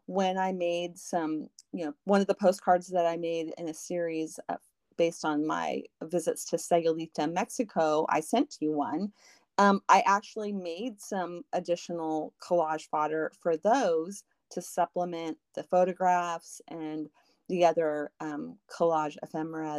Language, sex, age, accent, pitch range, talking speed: English, female, 30-49, American, 165-200 Hz, 145 wpm